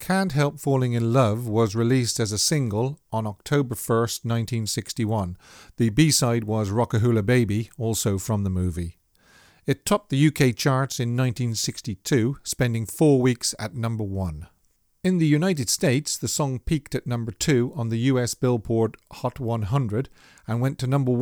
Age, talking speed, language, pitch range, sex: 50-69, 160 wpm, English, 110-135 Hz, male